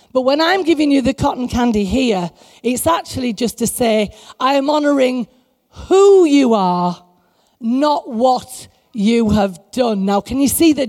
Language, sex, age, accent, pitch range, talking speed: English, female, 40-59, British, 220-280 Hz, 165 wpm